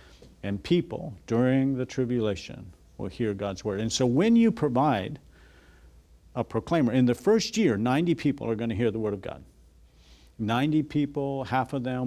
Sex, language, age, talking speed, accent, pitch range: male, English, 50-69, 175 wpm, American, 90-120 Hz